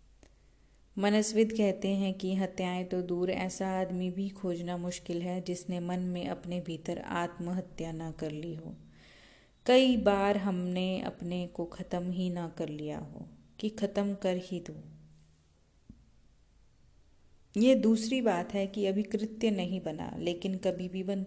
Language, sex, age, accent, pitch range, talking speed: Hindi, female, 30-49, native, 175-200 Hz, 150 wpm